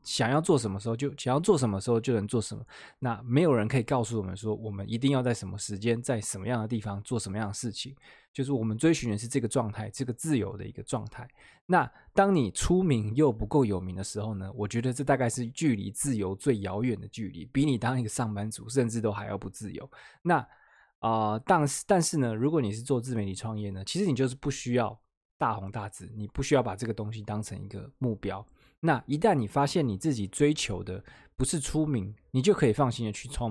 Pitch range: 105-135 Hz